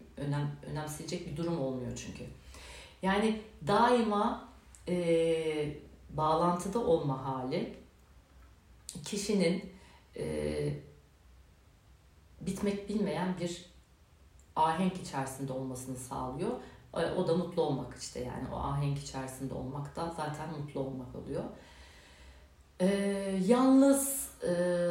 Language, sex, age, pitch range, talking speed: Turkish, female, 60-79, 130-175 Hz, 95 wpm